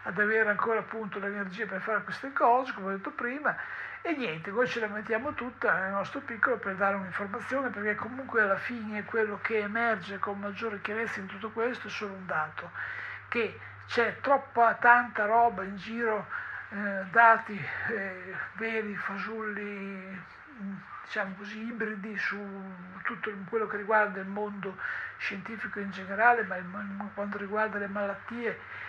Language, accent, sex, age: Italian, native, male, 60-79